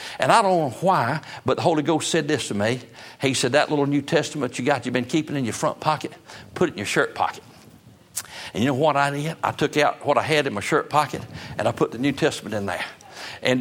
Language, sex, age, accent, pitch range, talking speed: English, male, 60-79, American, 120-145 Hz, 260 wpm